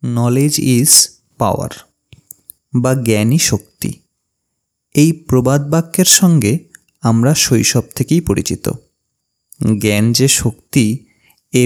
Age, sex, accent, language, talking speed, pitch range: 30-49, male, native, Bengali, 95 wpm, 110-150 Hz